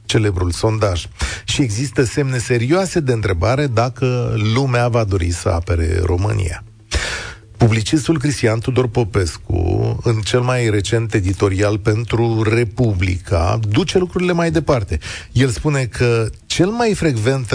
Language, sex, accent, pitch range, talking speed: Romanian, male, native, 105-135 Hz, 125 wpm